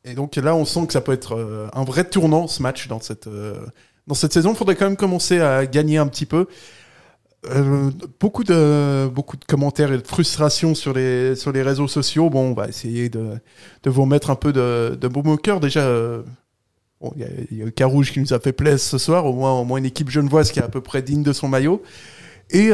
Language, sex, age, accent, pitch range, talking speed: French, male, 20-39, French, 125-160 Hz, 245 wpm